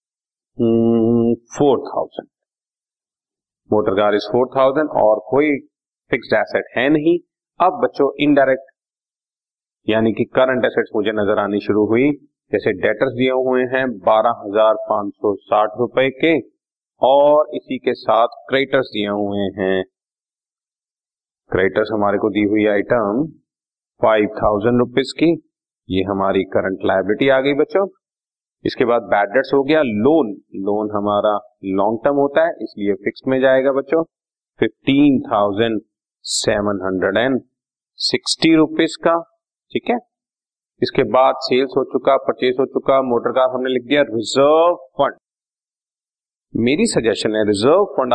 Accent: native